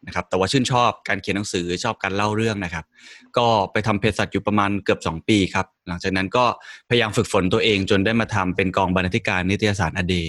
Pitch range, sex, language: 95-120 Hz, male, Thai